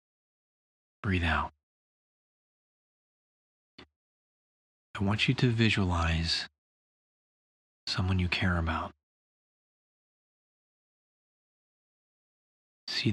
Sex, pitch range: male, 75-100 Hz